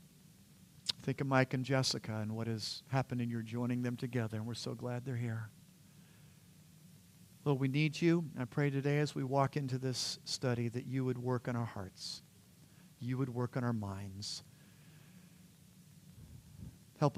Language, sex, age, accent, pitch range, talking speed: English, male, 50-69, American, 120-145 Hz, 165 wpm